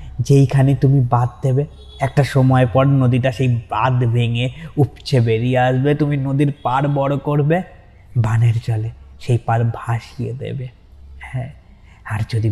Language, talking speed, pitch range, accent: Bengali, 115 wpm, 115-135 Hz, native